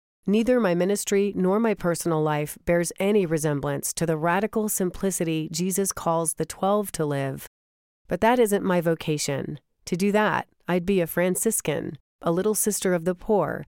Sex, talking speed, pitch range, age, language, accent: female, 165 wpm, 160-200 Hz, 40-59, English, American